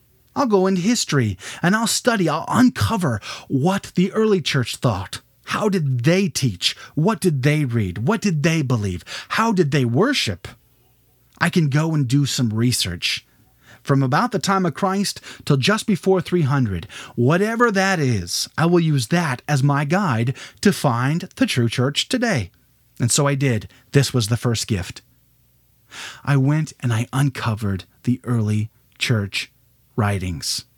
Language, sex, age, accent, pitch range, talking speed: English, male, 30-49, American, 120-185 Hz, 160 wpm